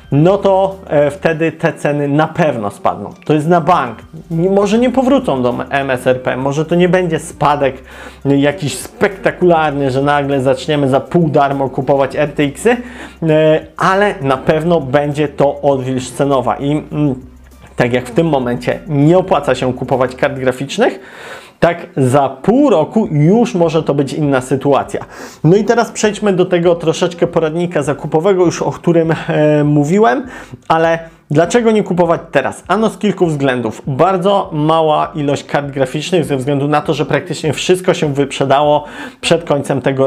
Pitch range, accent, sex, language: 140-190 Hz, native, male, Polish